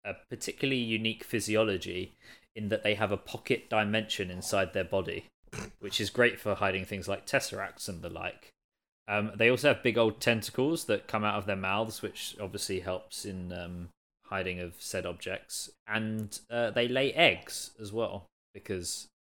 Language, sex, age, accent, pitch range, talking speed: English, male, 20-39, British, 95-110 Hz, 170 wpm